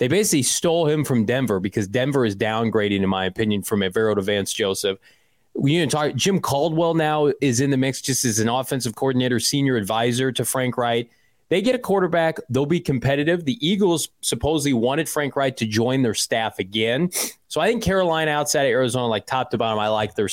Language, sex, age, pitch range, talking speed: English, male, 30-49, 115-150 Hz, 205 wpm